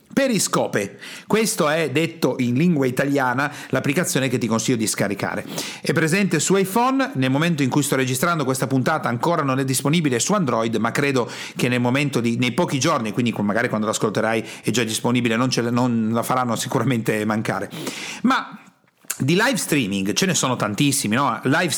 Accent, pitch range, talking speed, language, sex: native, 125-175 Hz, 175 wpm, Italian, male